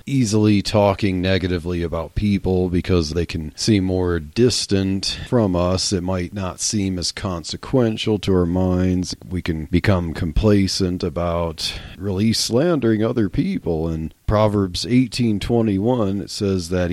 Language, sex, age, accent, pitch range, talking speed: English, male, 40-59, American, 90-115 Hz, 130 wpm